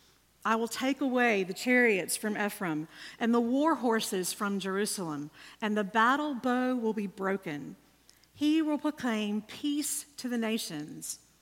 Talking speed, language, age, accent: 145 wpm, English, 50-69, American